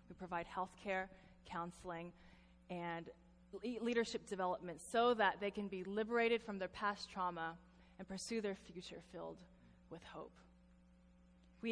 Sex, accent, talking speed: female, American, 135 wpm